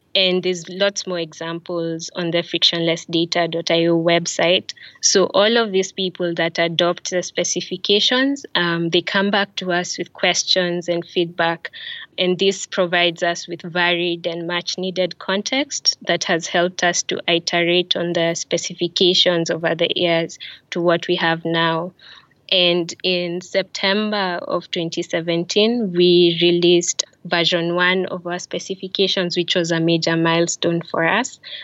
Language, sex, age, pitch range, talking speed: English, female, 20-39, 170-185 Hz, 140 wpm